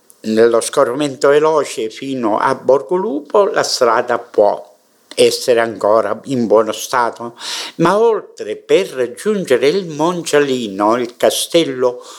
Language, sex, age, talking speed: Italian, male, 60-79, 115 wpm